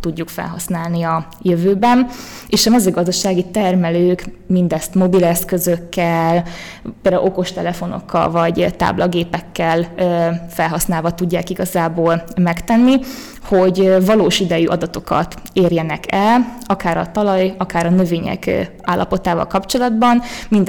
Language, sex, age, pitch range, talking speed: Hungarian, female, 20-39, 170-195 Hz, 95 wpm